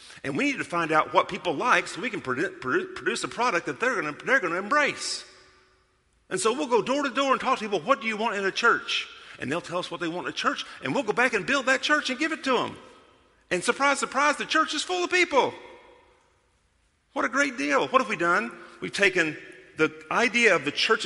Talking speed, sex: 245 wpm, male